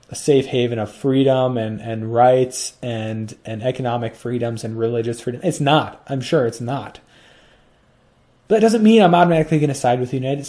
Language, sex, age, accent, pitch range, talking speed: English, male, 30-49, American, 115-155 Hz, 185 wpm